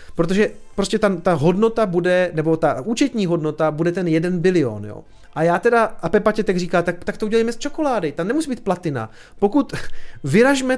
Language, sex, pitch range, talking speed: Czech, male, 160-215 Hz, 195 wpm